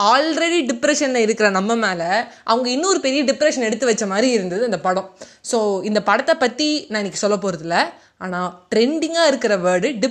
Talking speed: 195 wpm